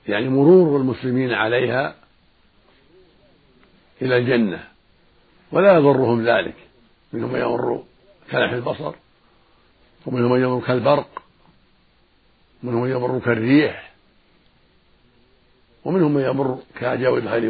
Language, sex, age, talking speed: Arabic, male, 60-79, 80 wpm